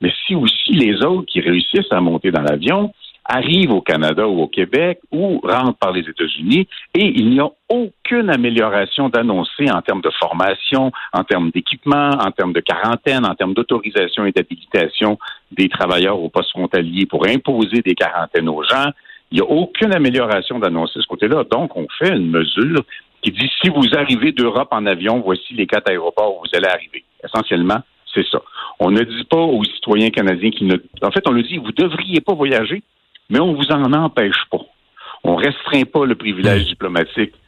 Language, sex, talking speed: French, male, 195 wpm